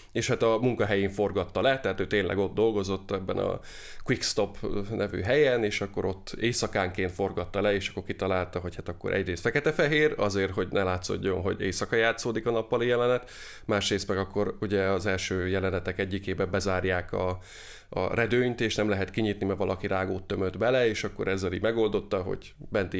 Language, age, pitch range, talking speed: Hungarian, 20-39, 95-110 Hz, 175 wpm